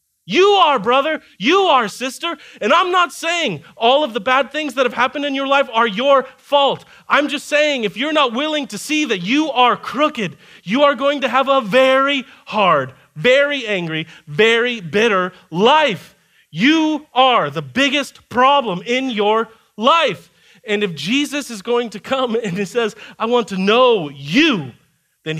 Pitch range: 205-285 Hz